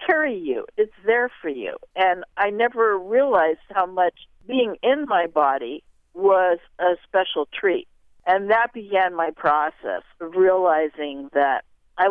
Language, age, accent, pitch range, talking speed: English, 50-69, American, 170-245 Hz, 145 wpm